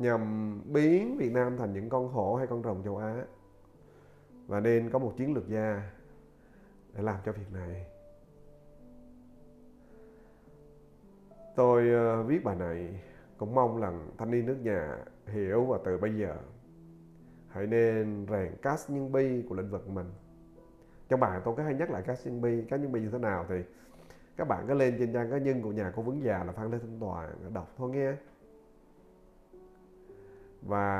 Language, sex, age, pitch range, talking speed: Vietnamese, male, 30-49, 95-130 Hz, 175 wpm